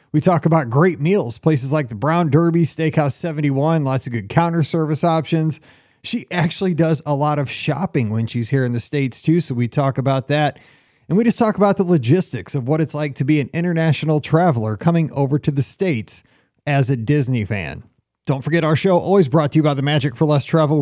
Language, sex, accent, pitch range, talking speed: English, male, American, 140-185 Hz, 220 wpm